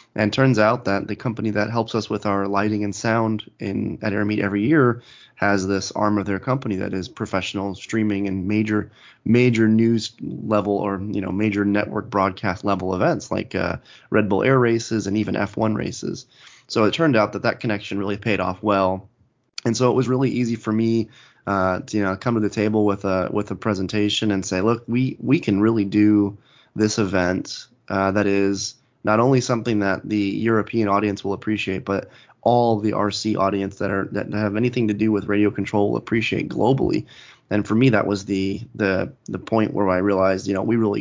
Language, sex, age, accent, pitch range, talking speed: English, male, 20-39, American, 100-110 Hz, 205 wpm